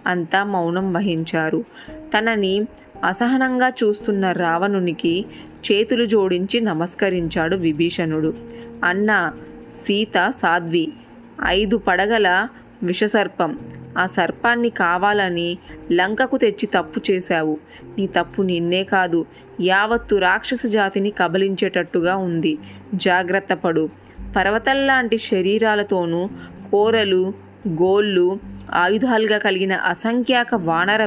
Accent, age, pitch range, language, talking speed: native, 20-39, 170-215 Hz, Telugu, 85 wpm